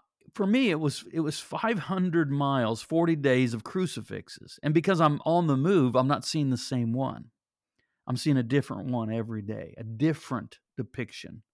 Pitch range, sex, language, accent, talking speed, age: 120-155 Hz, male, English, American, 175 wpm, 50-69